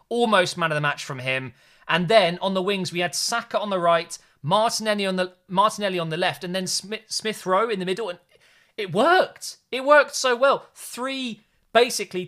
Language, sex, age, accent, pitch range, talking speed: English, male, 30-49, British, 145-185 Hz, 205 wpm